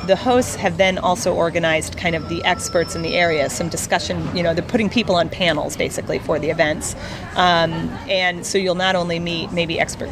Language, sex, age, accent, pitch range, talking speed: English, female, 30-49, American, 155-195 Hz, 210 wpm